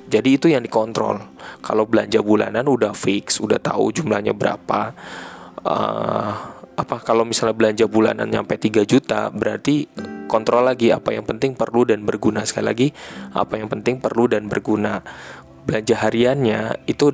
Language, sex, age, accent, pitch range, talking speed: Indonesian, male, 20-39, native, 105-120 Hz, 145 wpm